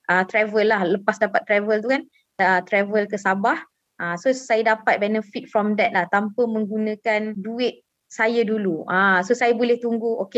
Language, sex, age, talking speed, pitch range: Malay, female, 20-39, 155 wpm, 215-270 Hz